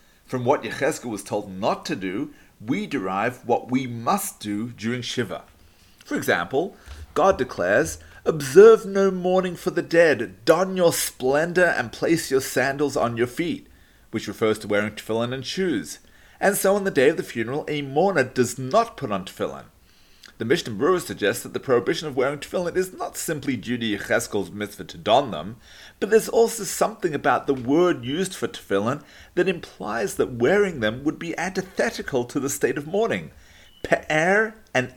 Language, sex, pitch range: English, male, 120-190 Hz